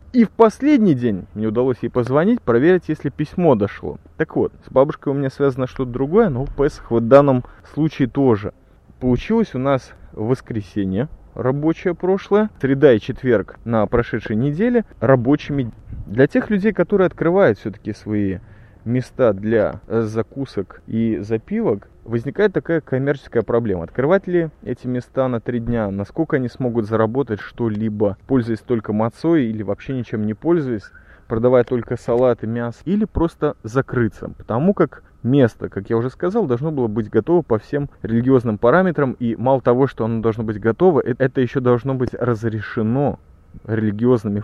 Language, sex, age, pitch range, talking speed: Russian, male, 20-39, 110-145 Hz, 155 wpm